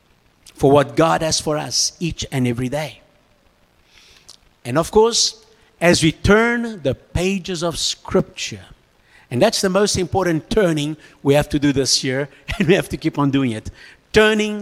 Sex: male